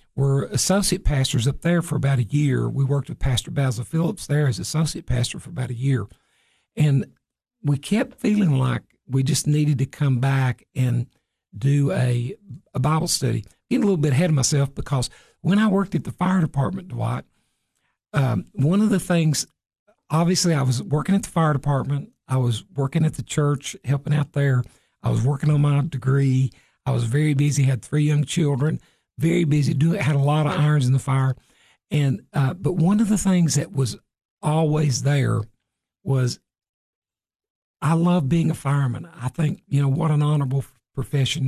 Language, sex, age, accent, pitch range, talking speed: English, male, 60-79, American, 130-160 Hz, 185 wpm